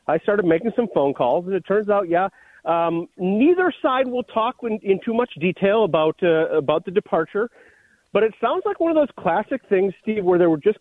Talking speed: 220 wpm